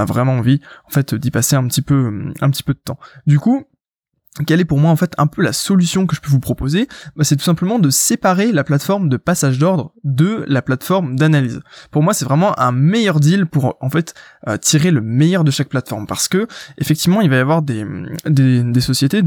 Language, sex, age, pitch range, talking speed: French, male, 20-39, 130-170 Hz, 225 wpm